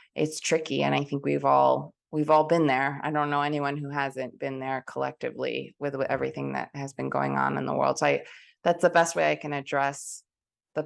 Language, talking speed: English, 220 wpm